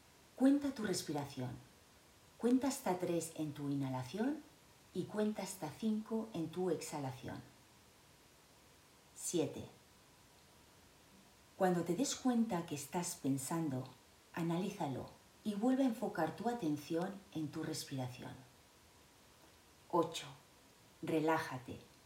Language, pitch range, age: Spanish, 145-200 Hz, 40-59